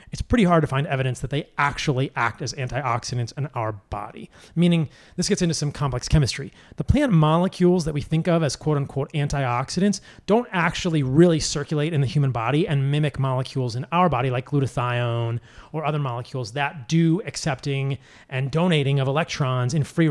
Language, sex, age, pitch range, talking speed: English, male, 30-49, 130-165 Hz, 180 wpm